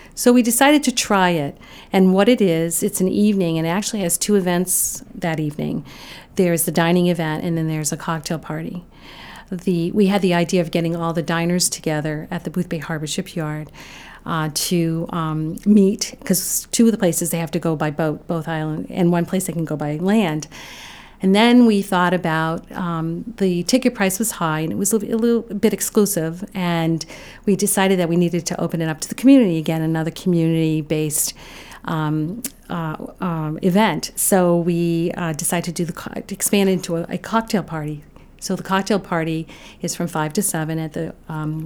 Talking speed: 205 wpm